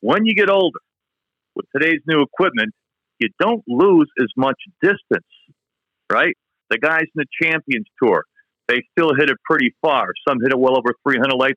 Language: English